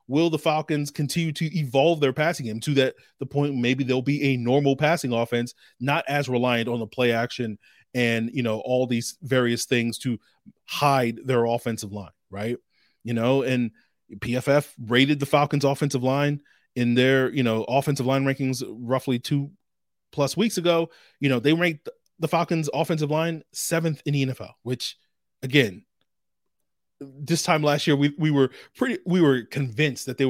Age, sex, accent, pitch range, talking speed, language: 30-49, male, American, 120-145 Hz, 175 wpm, English